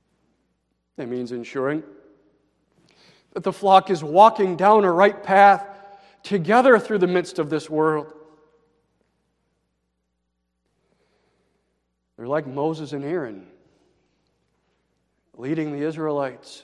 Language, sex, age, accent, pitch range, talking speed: English, male, 40-59, American, 120-180 Hz, 95 wpm